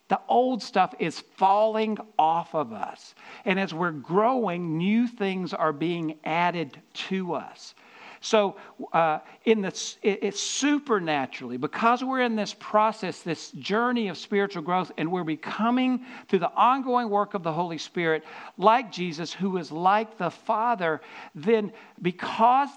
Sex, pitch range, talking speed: male, 160-220 Hz, 140 wpm